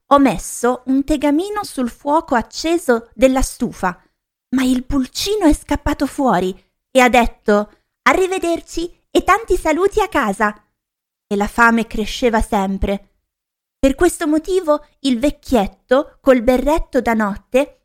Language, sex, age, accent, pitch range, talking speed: Italian, female, 30-49, native, 210-290 Hz, 130 wpm